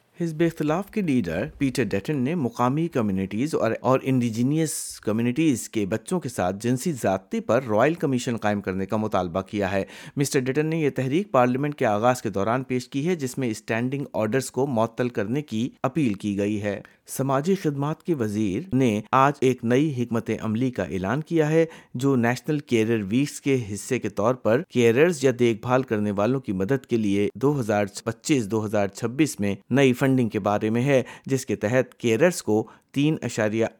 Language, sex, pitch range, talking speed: Urdu, male, 105-135 Hz, 180 wpm